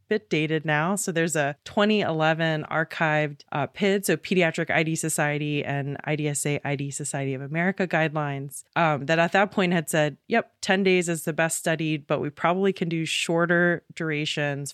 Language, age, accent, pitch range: English, 20-39, American, 155-185 Hz